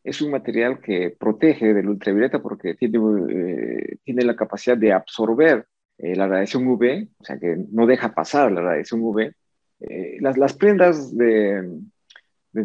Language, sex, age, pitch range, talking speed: Spanish, male, 50-69, 105-130 Hz, 160 wpm